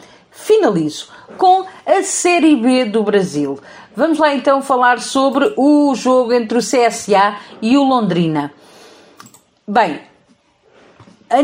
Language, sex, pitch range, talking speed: Portuguese, female, 205-265 Hz, 115 wpm